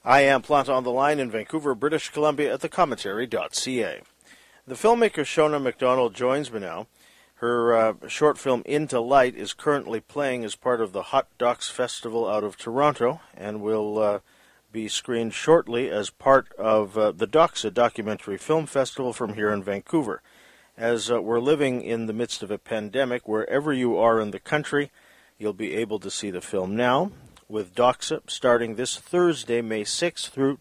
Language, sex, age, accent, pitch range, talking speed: English, male, 50-69, American, 110-140 Hz, 175 wpm